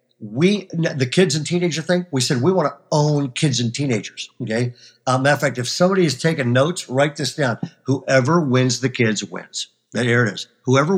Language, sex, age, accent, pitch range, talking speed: English, male, 50-69, American, 125-160 Hz, 210 wpm